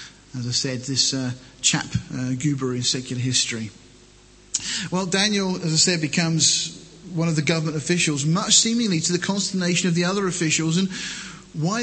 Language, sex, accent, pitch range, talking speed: English, male, British, 145-185 Hz, 170 wpm